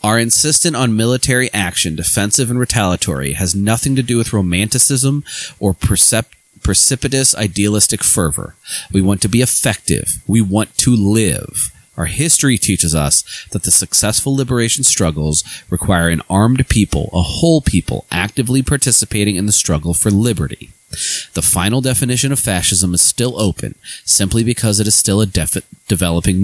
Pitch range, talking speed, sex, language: 90-115 Hz, 150 wpm, male, English